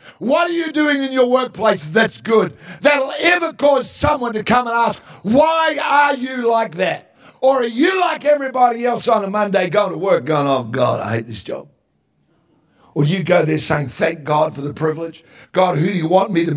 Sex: male